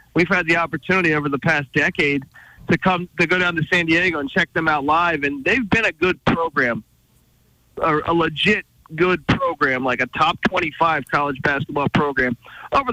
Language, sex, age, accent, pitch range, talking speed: English, male, 30-49, American, 140-180 Hz, 185 wpm